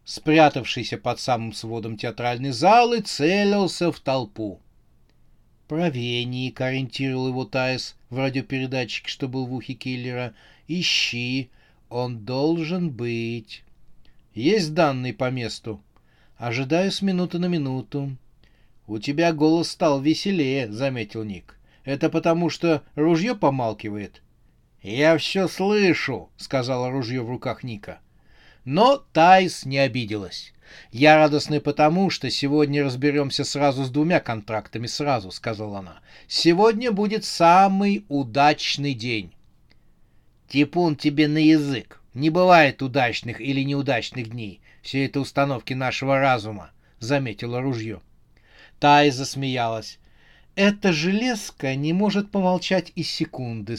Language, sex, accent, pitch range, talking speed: Russian, male, native, 120-160 Hz, 115 wpm